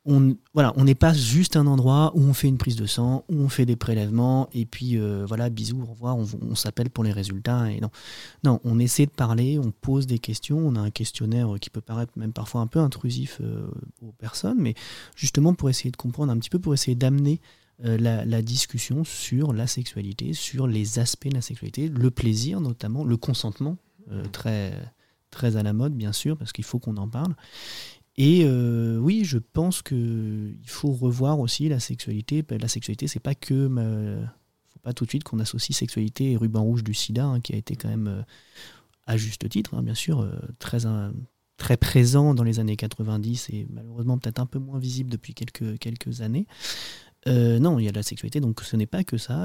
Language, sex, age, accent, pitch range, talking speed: French, male, 30-49, French, 110-140 Hz, 210 wpm